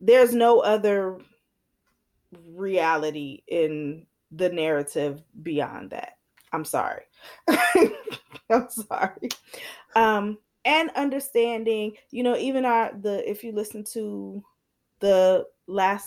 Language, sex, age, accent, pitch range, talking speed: English, female, 20-39, American, 170-220 Hz, 100 wpm